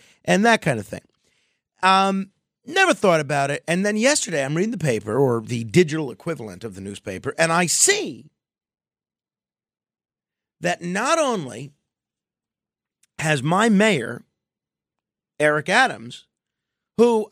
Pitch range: 135-220 Hz